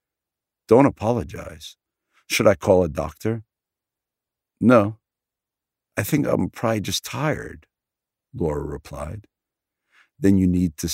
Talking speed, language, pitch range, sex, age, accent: 110 wpm, Dutch, 80-100 Hz, male, 50-69, American